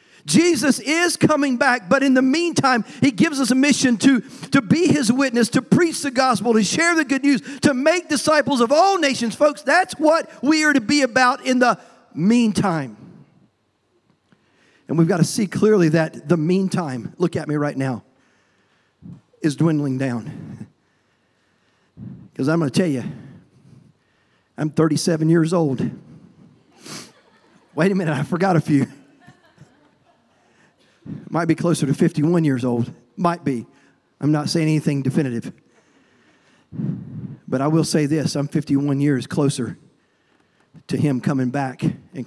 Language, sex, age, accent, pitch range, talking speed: English, male, 50-69, American, 150-240 Hz, 150 wpm